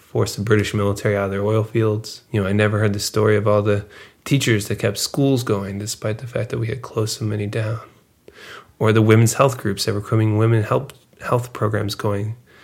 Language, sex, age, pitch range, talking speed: English, male, 20-39, 105-120 Hz, 225 wpm